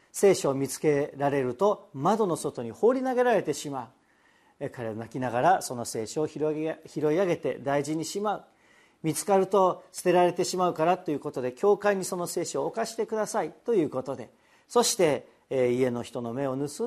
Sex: male